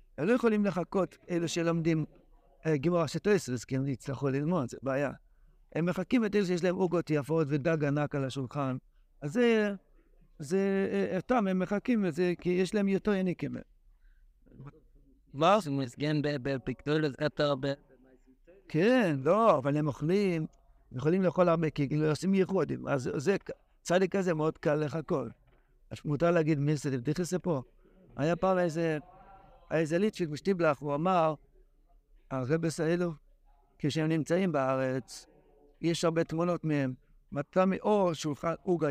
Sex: male